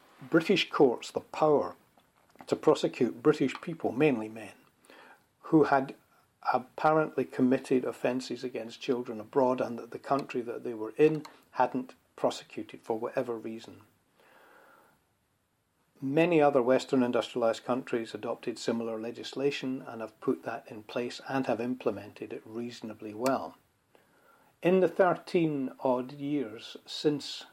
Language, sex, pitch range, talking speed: English, male, 115-145 Hz, 125 wpm